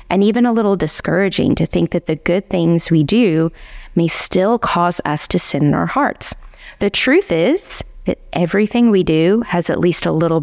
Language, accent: English, American